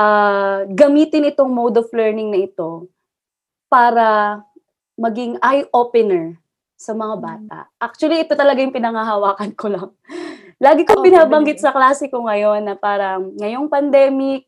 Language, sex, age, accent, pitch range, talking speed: English, female, 20-39, Filipino, 200-265 Hz, 135 wpm